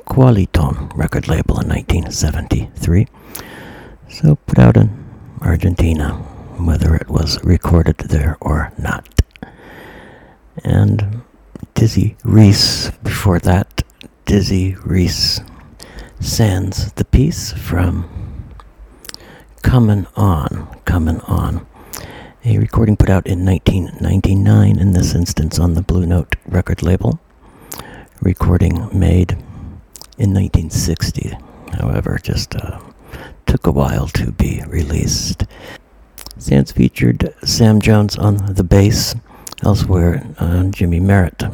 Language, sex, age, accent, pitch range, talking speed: English, male, 60-79, American, 85-105 Hz, 105 wpm